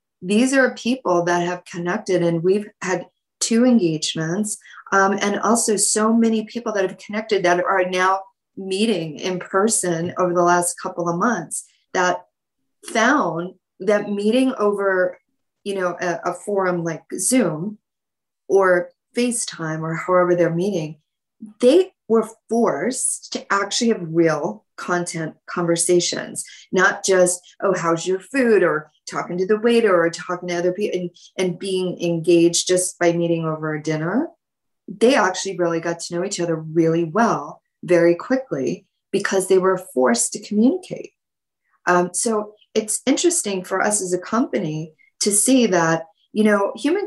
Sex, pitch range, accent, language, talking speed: female, 175-215 Hz, American, English, 150 wpm